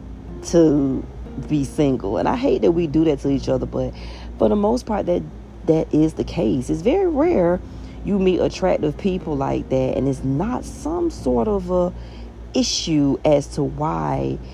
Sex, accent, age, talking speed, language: female, American, 40-59, 180 wpm, English